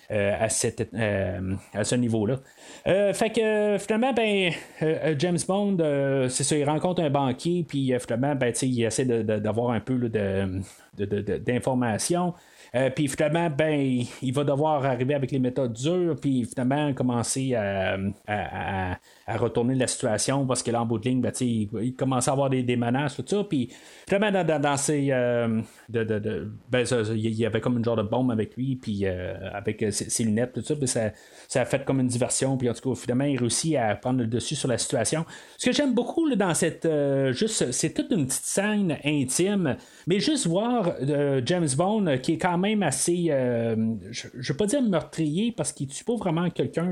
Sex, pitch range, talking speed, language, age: male, 120-170 Hz, 220 wpm, French, 30-49